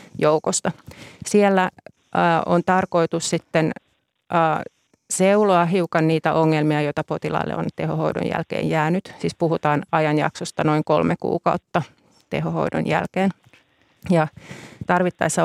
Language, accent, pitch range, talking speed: Finnish, native, 160-180 Hz, 100 wpm